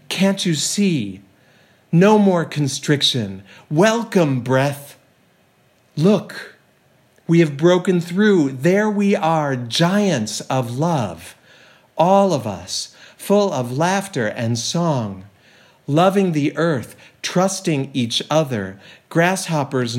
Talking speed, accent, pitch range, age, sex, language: 100 wpm, American, 130-175 Hz, 50-69, male, English